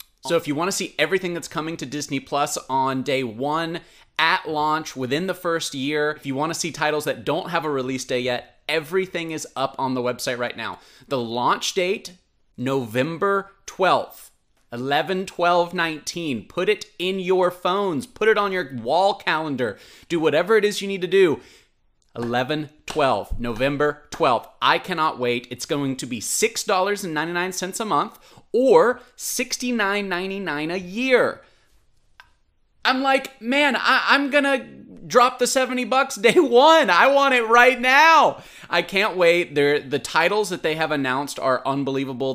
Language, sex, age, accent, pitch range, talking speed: English, male, 30-49, American, 135-185 Hz, 155 wpm